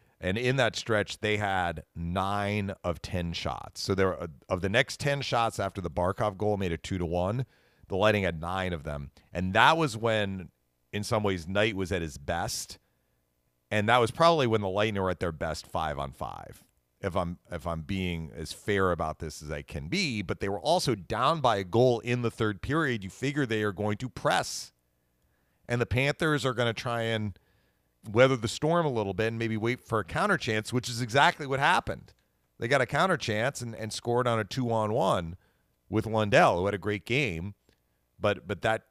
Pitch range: 85-115 Hz